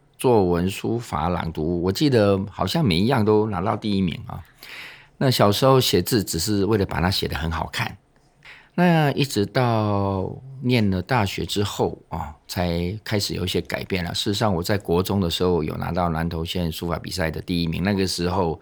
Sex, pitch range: male, 85-110 Hz